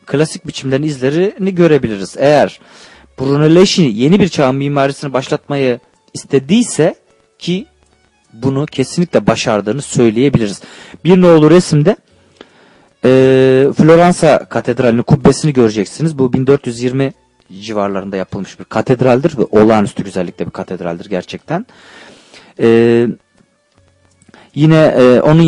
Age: 40-59